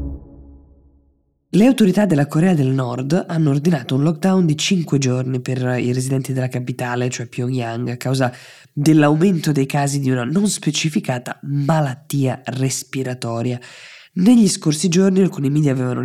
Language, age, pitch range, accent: Italian, 20-39, 130-160 Hz, native